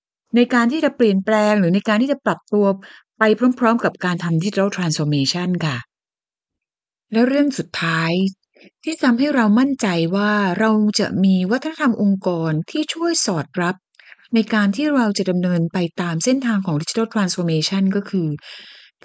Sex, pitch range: female, 175-235 Hz